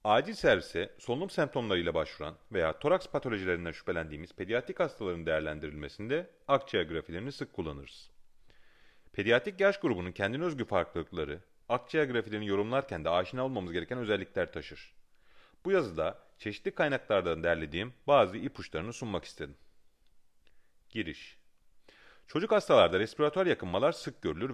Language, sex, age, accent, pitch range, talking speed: Turkish, male, 40-59, native, 85-135 Hz, 115 wpm